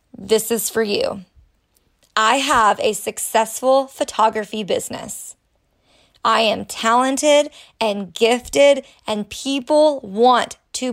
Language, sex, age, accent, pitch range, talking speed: English, female, 20-39, American, 215-265 Hz, 105 wpm